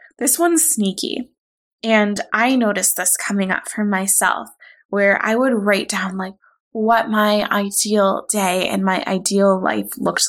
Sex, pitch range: female, 195-225 Hz